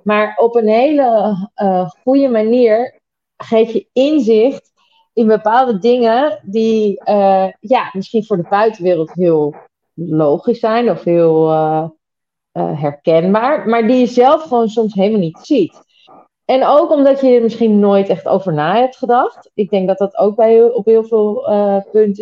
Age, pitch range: 30-49, 185-235 Hz